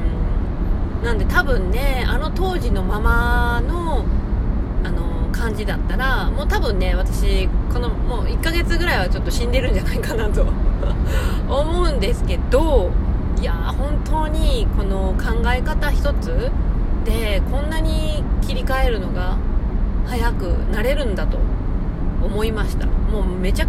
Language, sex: Japanese, female